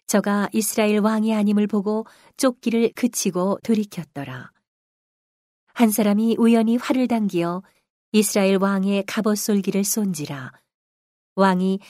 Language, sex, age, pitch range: Korean, female, 40-59, 180-215 Hz